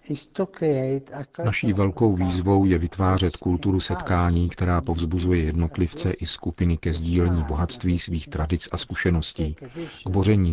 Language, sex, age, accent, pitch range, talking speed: Czech, male, 50-69, native, 85-100 Hz, 120 wpm